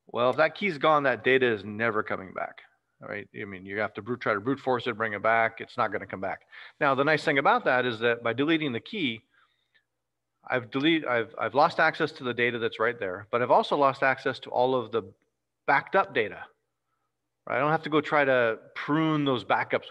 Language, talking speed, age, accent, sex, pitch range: English, 235 wpm, 40-59, American, male, 110-140 Hz